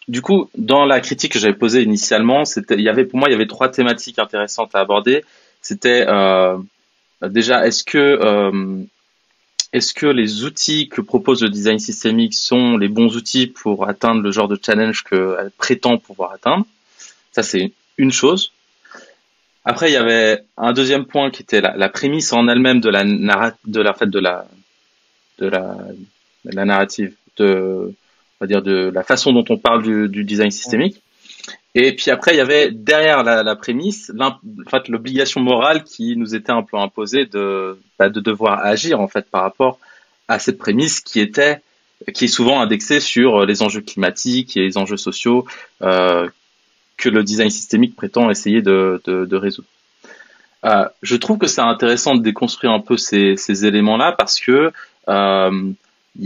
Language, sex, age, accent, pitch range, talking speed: French, male, 20-39, French, 100-130 Hz, 180 wpm